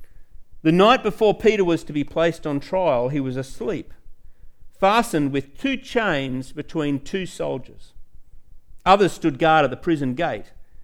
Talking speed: 150 wpm